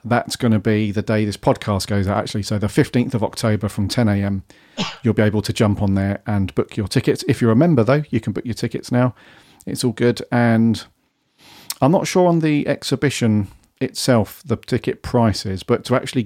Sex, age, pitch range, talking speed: male, 40-59, 100-120 Hz, 210 wpm